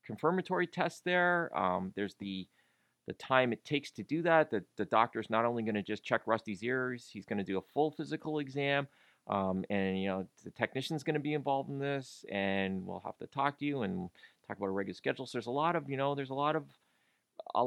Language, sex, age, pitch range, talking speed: English, male, 30-49, 100-155 Hz, 235 wpm